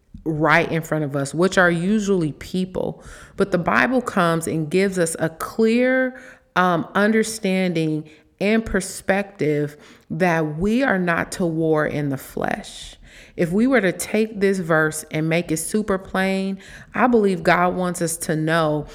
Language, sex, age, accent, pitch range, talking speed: English, female, 30-49, American, 165-205 Hz, 160 wpm